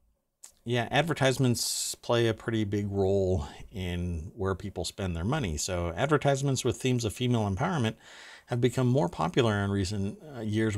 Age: 50-69